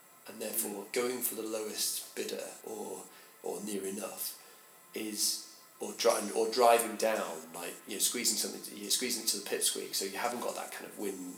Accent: British